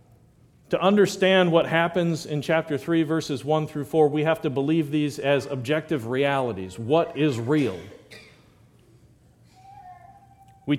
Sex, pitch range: male, 125-155 Hz